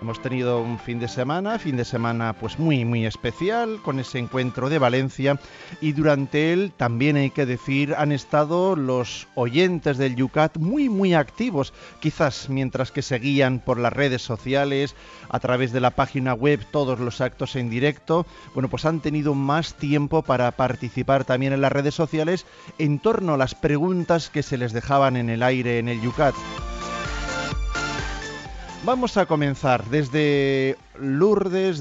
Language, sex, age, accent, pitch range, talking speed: Spanish, male, 40-59, Spanish, 125-155 Hz, 160 wpm